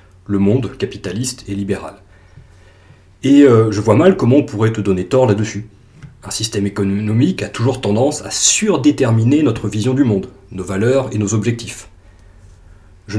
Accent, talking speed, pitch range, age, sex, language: French, 160 wpm, 95-120 Hz, 30-49, male, French